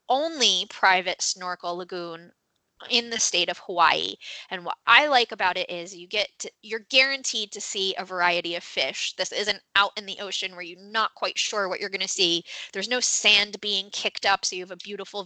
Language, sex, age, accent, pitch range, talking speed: English, female, 20-39, American, 180-215 Hz, 210 wpm